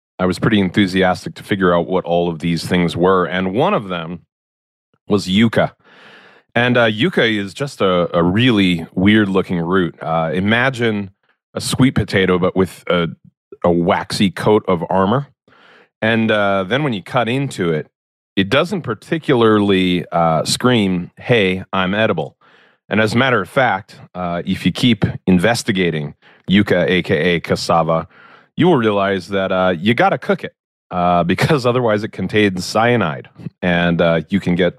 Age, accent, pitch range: 30-49, American, 90-115 Hz